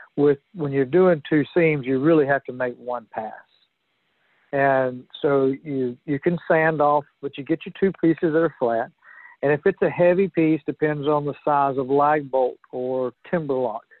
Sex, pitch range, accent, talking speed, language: male, 135-155 Hz, American, 195 wpm, English